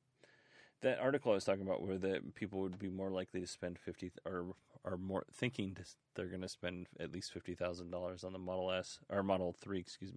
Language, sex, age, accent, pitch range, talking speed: English, male, 30-49, American, 90-110 Hz, 205 wpm